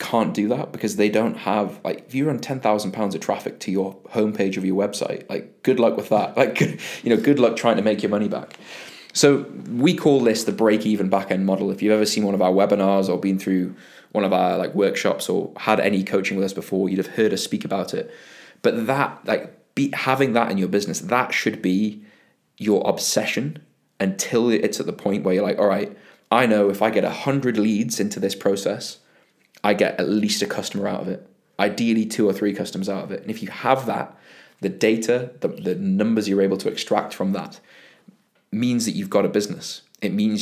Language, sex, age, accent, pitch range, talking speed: English, male, 20-39, British, 100-120 Hz, 225 wpm